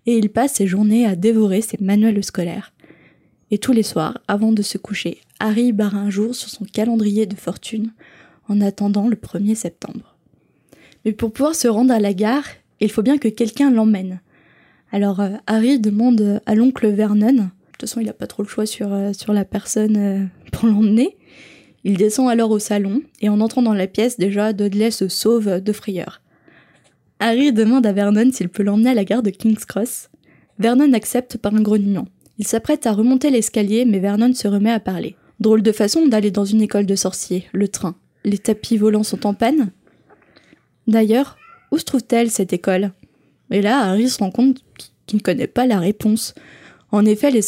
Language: French